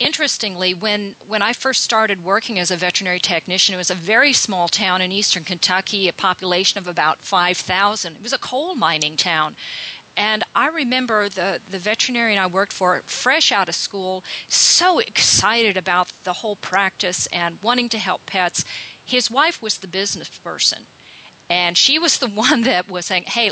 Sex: female